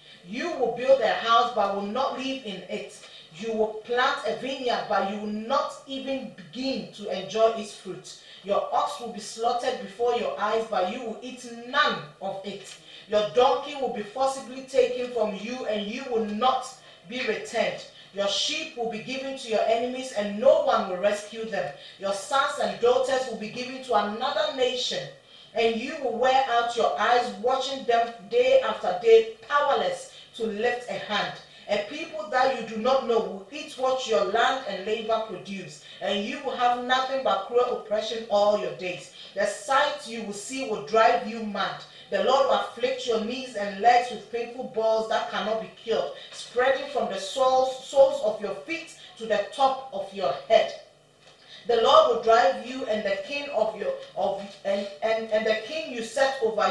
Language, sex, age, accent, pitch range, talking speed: English, female, 30-49, Nigerian, 210-260 Hz, 190 wpm